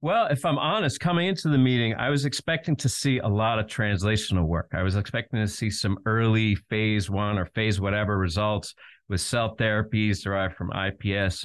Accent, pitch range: American, 95-120 Hz